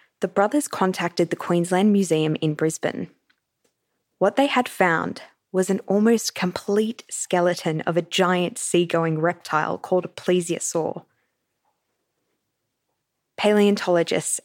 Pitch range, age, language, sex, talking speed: 170-210 Hz, 20-39, English, female, 110 wpm